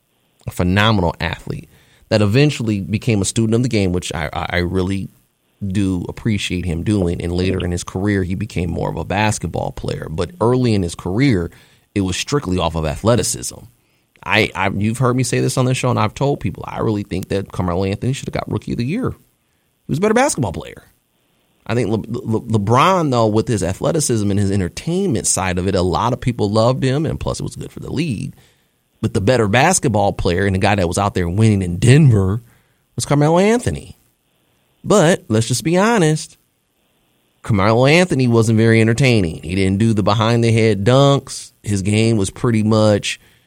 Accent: American